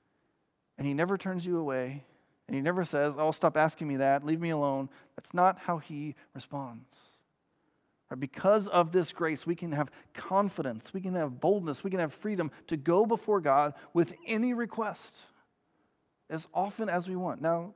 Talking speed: 175 wpm